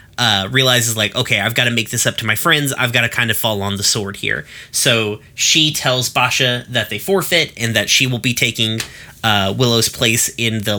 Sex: male